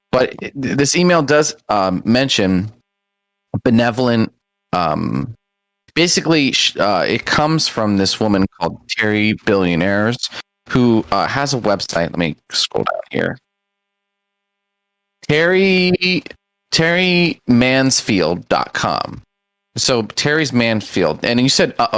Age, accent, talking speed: 30-49, American, 100 wpm